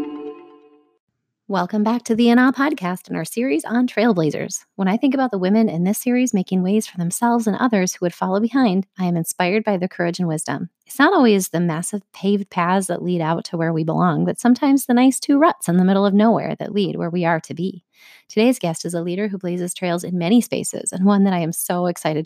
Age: 30-49